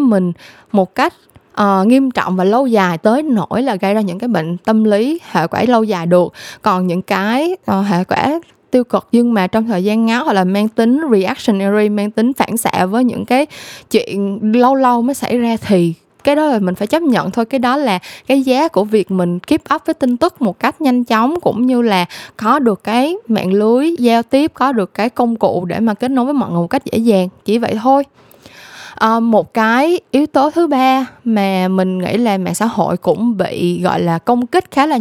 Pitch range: 185-250 Hz